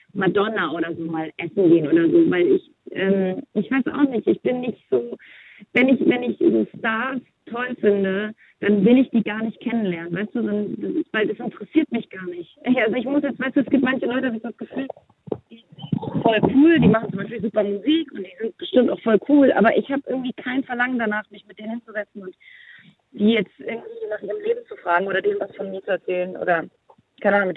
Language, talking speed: German, 235 wpm